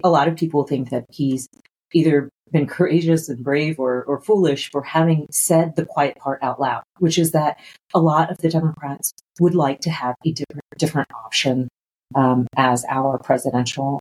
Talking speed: 185 wpm